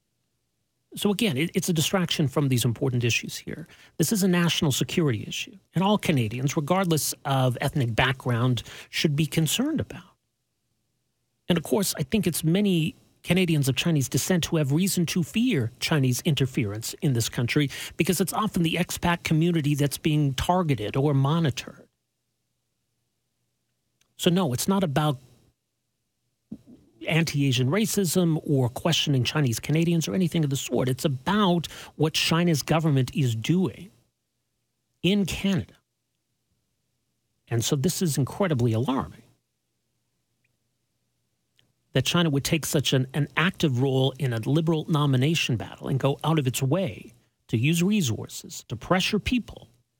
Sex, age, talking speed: male, 40-59, 140 wpm